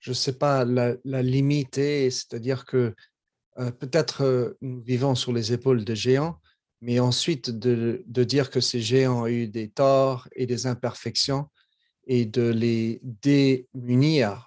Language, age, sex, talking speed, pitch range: French, 40-59, male, 160 wpm, 115-135 Hz